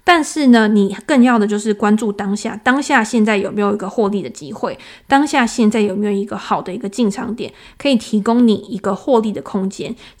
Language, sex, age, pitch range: Chinese, female, 20-39, 205-250 Hz